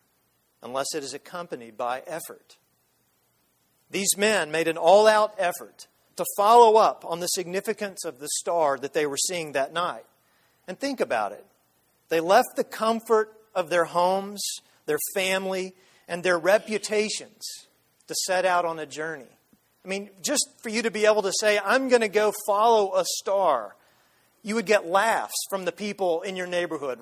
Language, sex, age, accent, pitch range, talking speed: English, male, 40-59, American, 165-215 Hz, 170 wpm